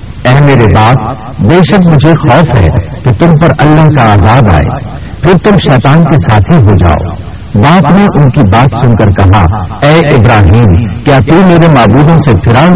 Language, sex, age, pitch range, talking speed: Urdu, male, 60-79, 105-160 Hz, 185 wpm